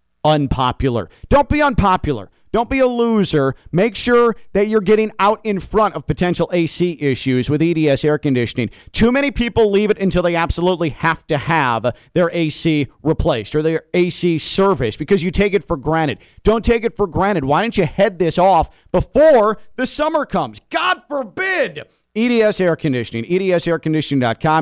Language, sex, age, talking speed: English, male, 40-59, 170 wpm